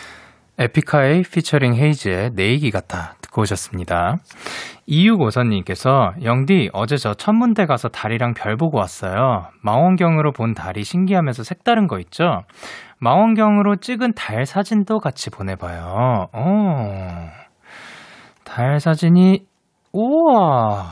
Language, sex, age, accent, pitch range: Korean, male, 20-39, native, 110-180 Hz